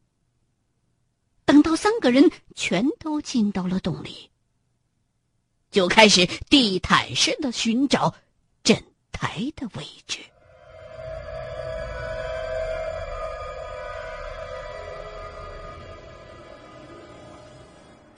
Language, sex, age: Chinese, female, 50-69